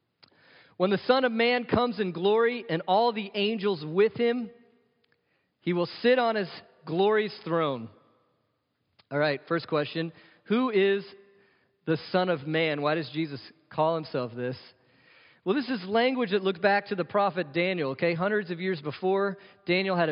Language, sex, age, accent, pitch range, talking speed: English, male, 40-59, American, 175-220 Hz, 165 wpm